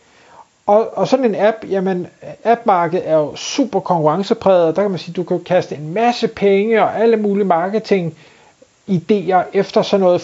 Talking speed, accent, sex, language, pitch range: 170 wpm, native, male, Danish, 160-215 Hz